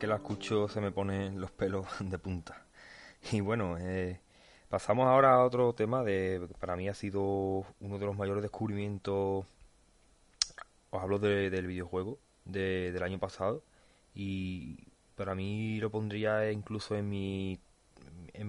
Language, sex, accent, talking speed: Spanish, male, Spanish, 150 wpm